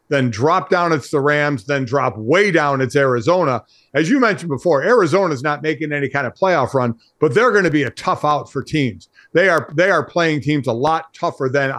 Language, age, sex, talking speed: English, 50-69, male, 225 wpm